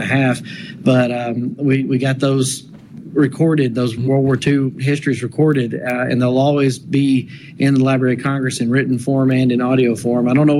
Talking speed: 200 wpm